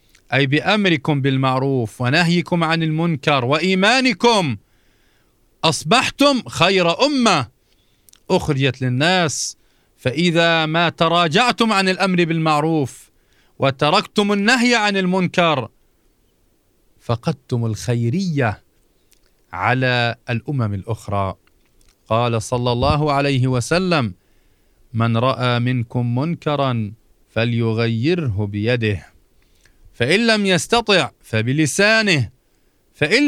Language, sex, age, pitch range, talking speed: Arabic, male, 40-59, 110-175 Hz, 80 wpm